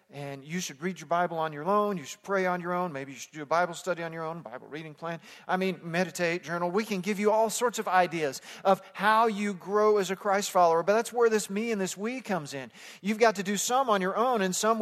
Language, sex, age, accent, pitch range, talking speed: English, male, 40-59, American, 160-210 Hz, 275 wpm